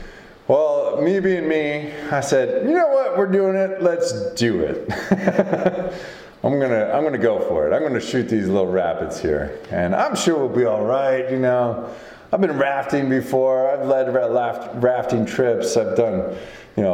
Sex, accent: male, American